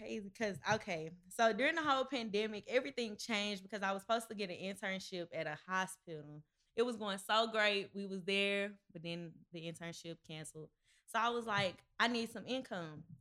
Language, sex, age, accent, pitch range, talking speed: English, female, 20-39, American, 170-220 Hz, 185 wpm